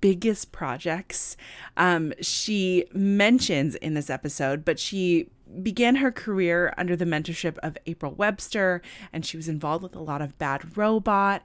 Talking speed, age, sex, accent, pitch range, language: 150 wpm, 20-39, female, American, 160-200 Hz, English